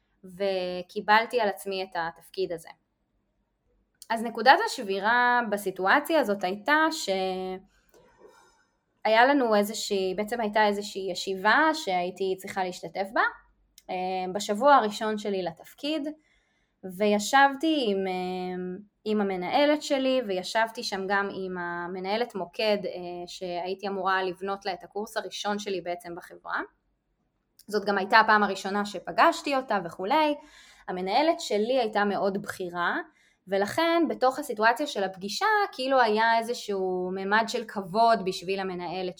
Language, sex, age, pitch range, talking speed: Hebrew, female, 20-39, 185-245 Hz, 115 wpm